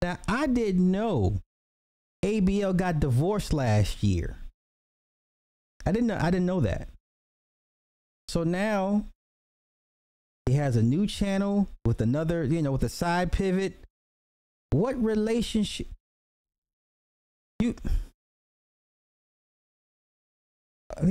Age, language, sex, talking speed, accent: 30-49, English, male, 95 wpm, American